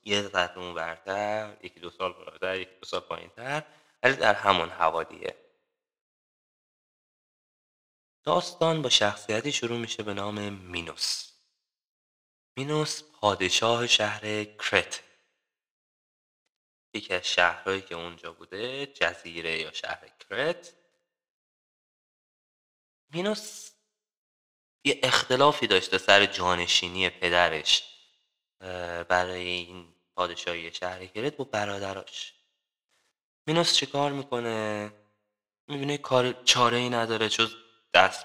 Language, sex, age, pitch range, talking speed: Persian, male, 20-39, 90-130 Hz, 95 wpm